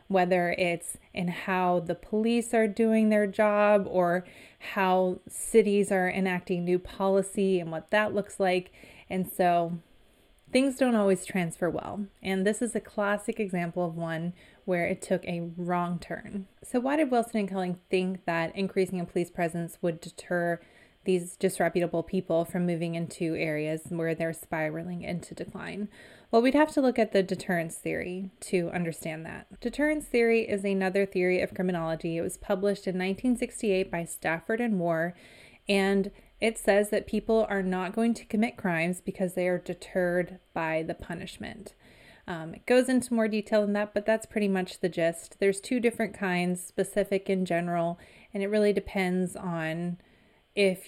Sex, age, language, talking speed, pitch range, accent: female, 20-39, English, 165 wpm, 175-210 Hz, American